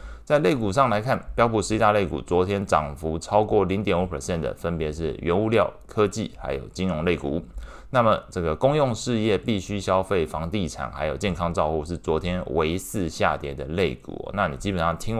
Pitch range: 75-95 Hz